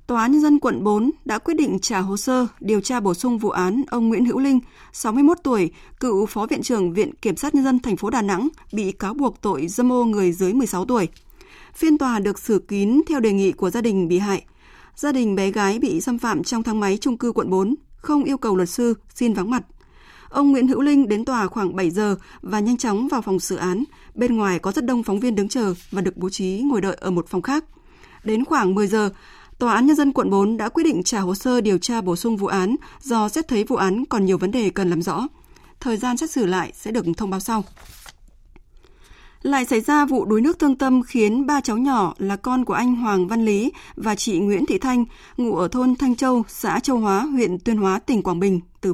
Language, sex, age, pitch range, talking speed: Vietnamese, female, 20-39, 195-255 Hz, 250 wpm